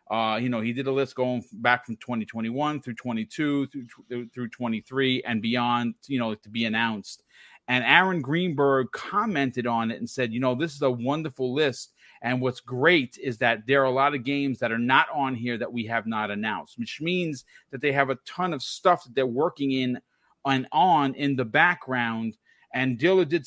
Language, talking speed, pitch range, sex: English, 210 wpm, 125-160 Hz, male